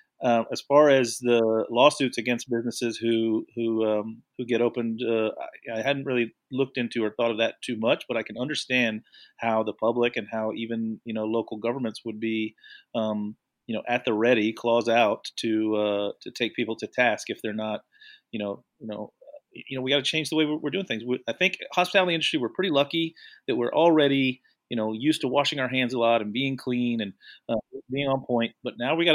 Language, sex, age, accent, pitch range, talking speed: English, male, 30-49, American, 115-145 Hz, 220 wpm